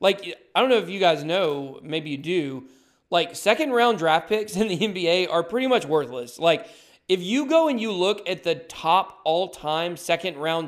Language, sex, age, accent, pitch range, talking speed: English, male, 20-39, American, 160-210 Hz, 200 wpm